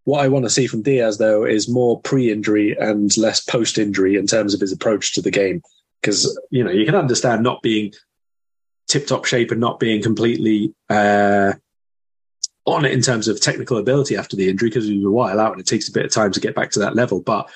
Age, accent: 20-39, British